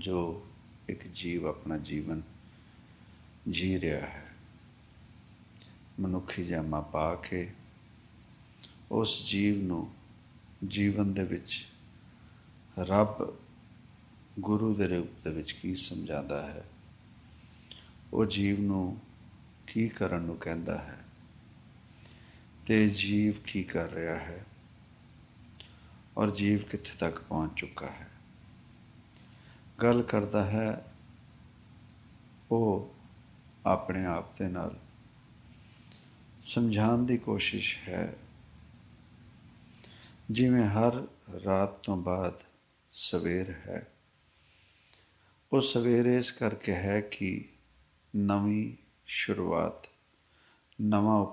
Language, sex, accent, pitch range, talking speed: English, male, Indian, 90-115 Hz, 85 wpm